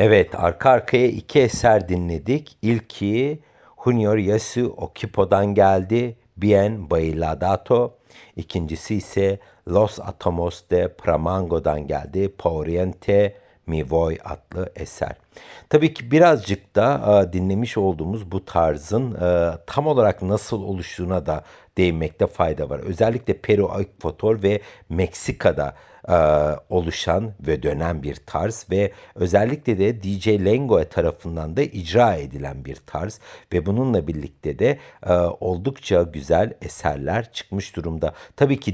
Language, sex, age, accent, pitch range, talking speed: Turkish, male, 60-79, native, 85-115 Hz, 115 wpm